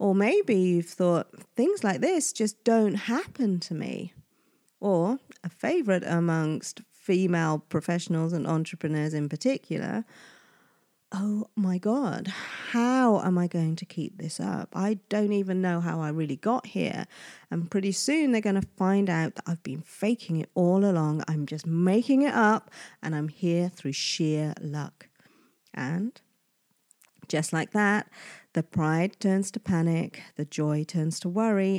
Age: 40-59